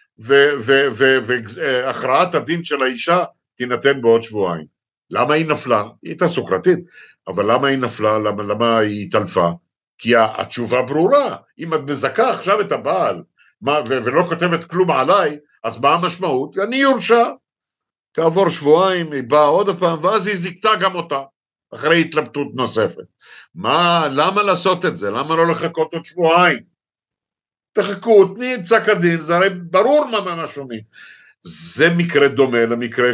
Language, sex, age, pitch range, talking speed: Hebrew, male, 60-79, 130-195 Hz, 145 wpm